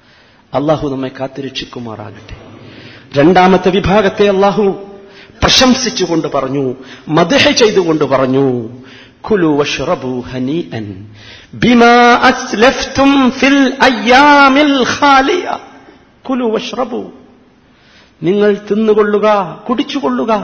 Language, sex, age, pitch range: Malayalam, male, 50-69, 180-270 Hz